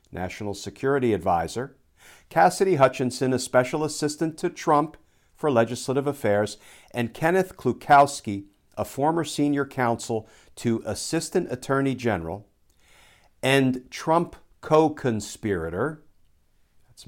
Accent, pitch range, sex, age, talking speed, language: American, 95-130 Hz, male, 50-69, 100 wpm, English